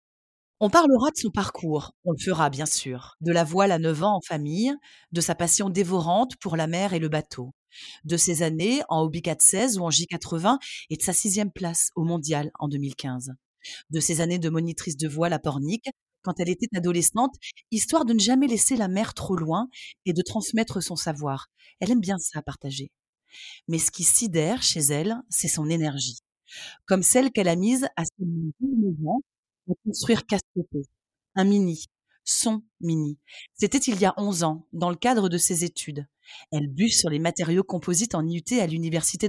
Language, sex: French, female